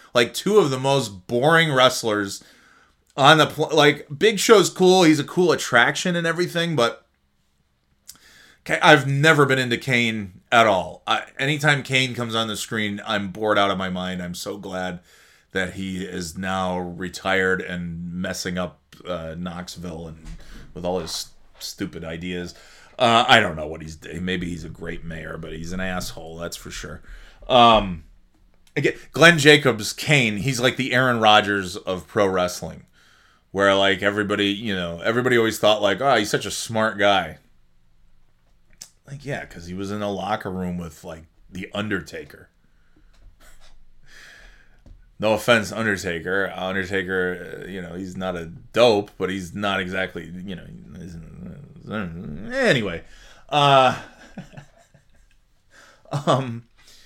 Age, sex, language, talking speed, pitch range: 30-49, male, English, 145 wpm, 90-125 Hz